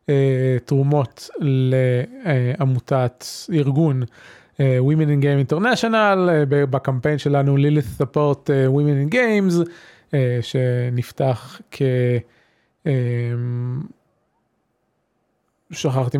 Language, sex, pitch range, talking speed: Hebrew, male, 130-155 Hz, 60 wpm